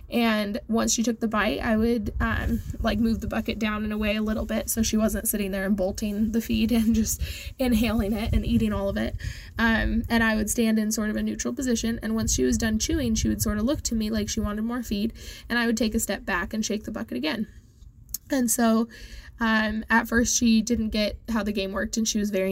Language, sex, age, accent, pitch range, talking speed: English, female, 10-29, American, 210-230 Hz, 250 wpm